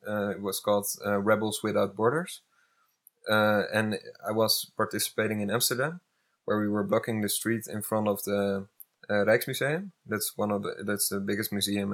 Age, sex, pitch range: 20-39, male, 100-115 Hz